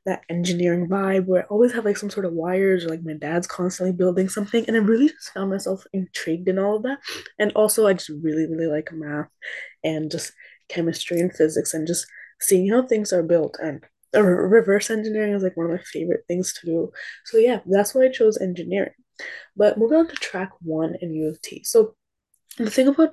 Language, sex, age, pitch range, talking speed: English, female, 20-39, 180-215 Hz, 220 wpm